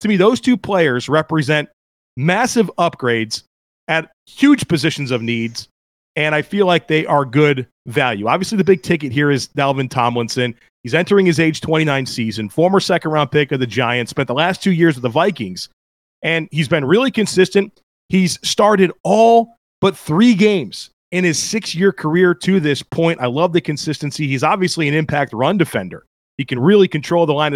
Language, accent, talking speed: English, American, 180 wpm